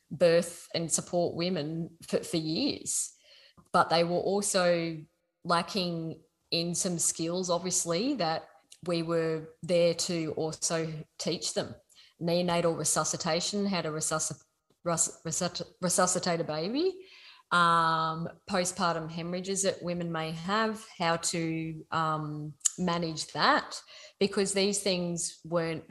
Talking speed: 110 wpm